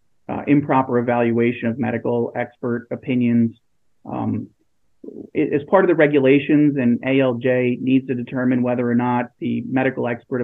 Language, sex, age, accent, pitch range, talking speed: English, male, 30-49, American, 120-135 Hz, 140 wpm